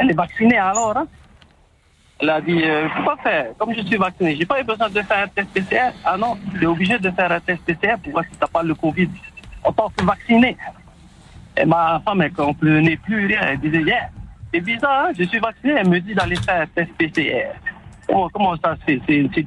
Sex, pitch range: male, 155-215 Hz